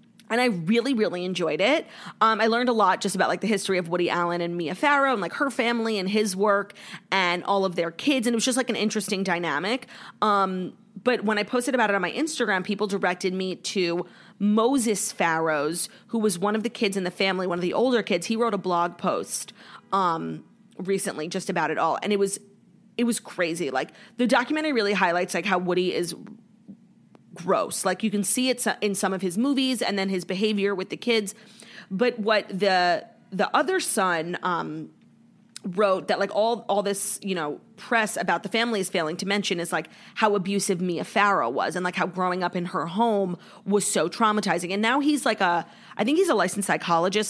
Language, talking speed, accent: English, 215 wpm, American